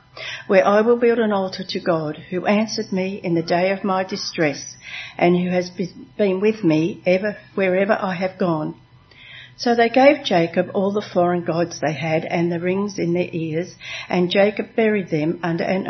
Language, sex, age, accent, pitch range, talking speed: English, female, 60-79, Australian, 160-195 Hz, 190 wpm